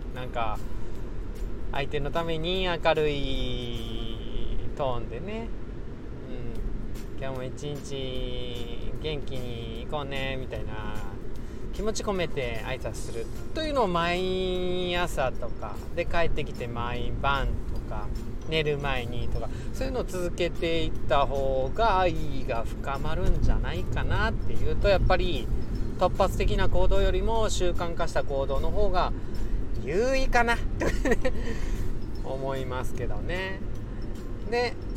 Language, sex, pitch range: Japanese, male, 115-145 Hz